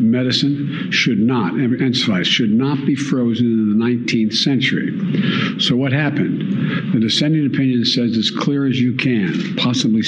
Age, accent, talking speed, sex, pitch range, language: 60-79, American, 150 wpm, male, 120-190 Hz, English